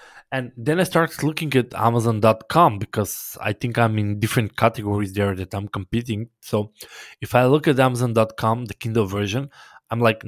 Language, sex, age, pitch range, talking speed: English, male, 20-39, 110-130 Hz, 170 wpm